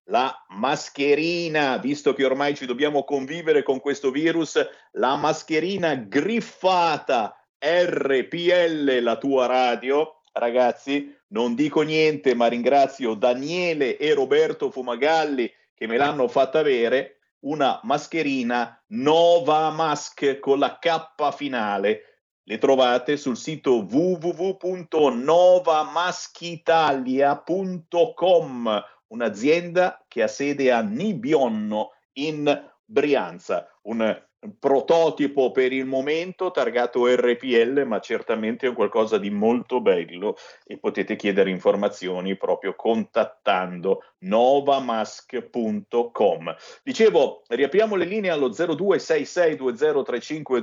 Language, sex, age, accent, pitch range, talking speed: Italian, male, 50-69, native, 130-185 Hz, 95 wpm